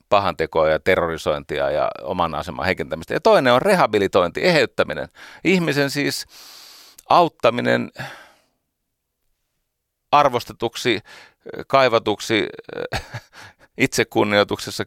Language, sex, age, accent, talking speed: Finnish, male, 40-59, native, 75 wpm